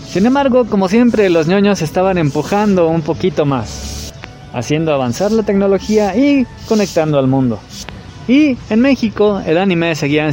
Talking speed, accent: 145 wpm, Mexican